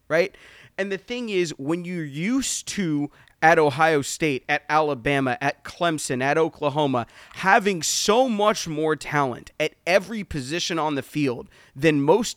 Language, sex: English, male